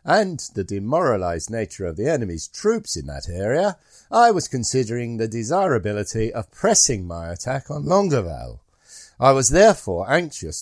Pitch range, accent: 105-165 Hz, British